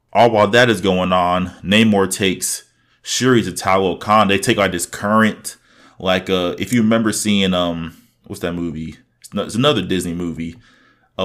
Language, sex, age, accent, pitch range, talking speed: English, male, 20-39, American, 95-120 Hz, 180 wpm